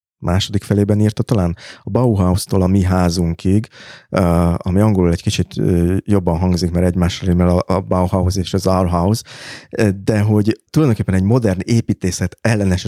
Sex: male